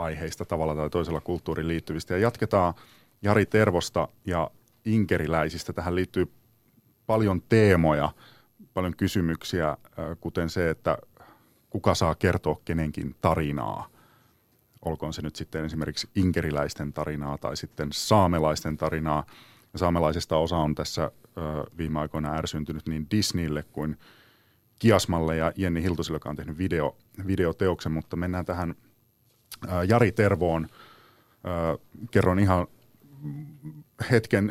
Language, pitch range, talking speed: Finnish, 80-105 Hz, 110 wpm